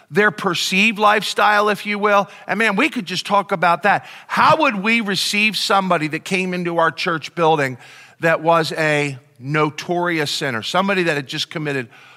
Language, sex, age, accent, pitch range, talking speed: Ukrainian, male, 50-69, American, 145-195 Hz, 175 wpm